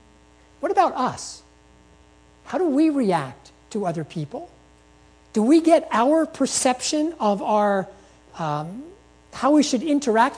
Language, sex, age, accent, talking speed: English, male, 50-69, American, 125 wpm